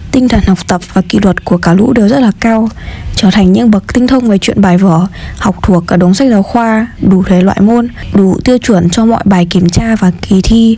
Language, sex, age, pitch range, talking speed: Vietnamese, female, 20-39, 185-230 Hz, 255 wpm